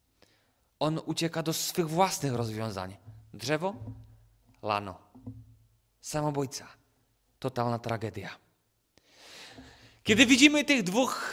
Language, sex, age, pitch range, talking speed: Czech, male, 30-49, 120-180 Hz, 80 wpm